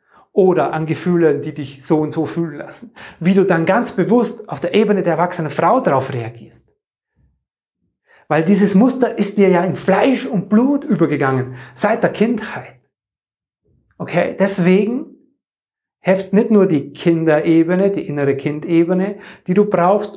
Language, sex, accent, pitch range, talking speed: German, male, German, 140-195 Hz, 150 wpm